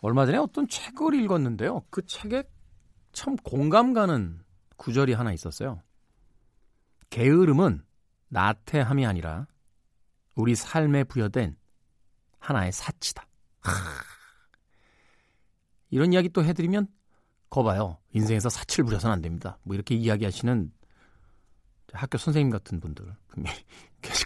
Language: Korean